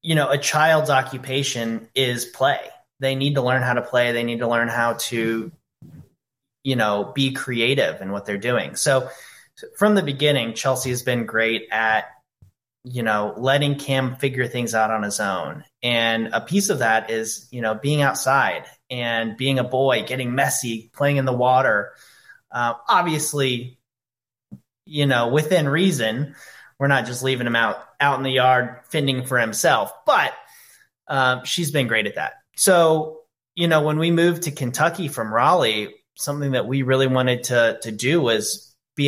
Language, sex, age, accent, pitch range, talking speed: English, male, 30-49, American, 115-140 Hz, 175 wpm